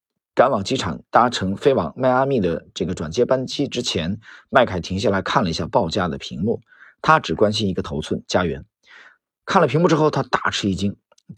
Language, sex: Chinese, male